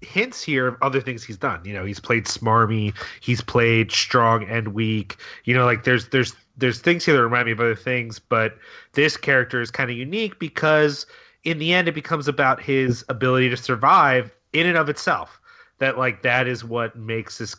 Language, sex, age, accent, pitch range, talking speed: English, male, 30-49, American, 110-135 Hz, 205 wpm